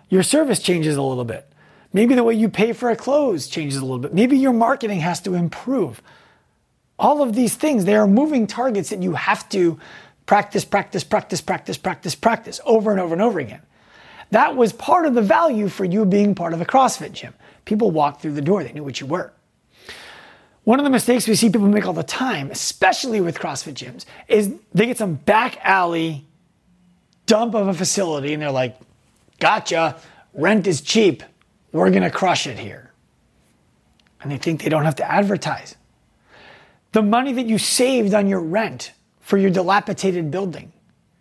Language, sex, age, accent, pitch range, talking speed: English, male, 30-49, American, 160-220 Hz, 190 wpm